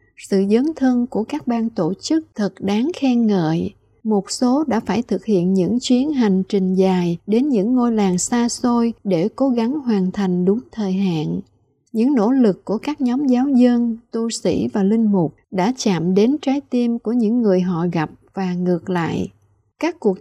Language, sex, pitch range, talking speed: Vietnamese, female, 190-245 Hz, 195 wpm